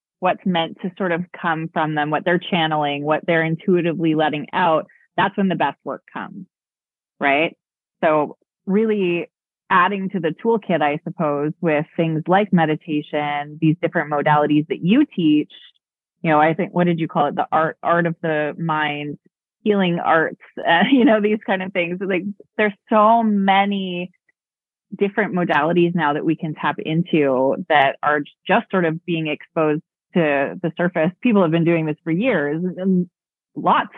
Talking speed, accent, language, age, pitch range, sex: 170 wpm, American, English, 30-49, 150-185 Hz, female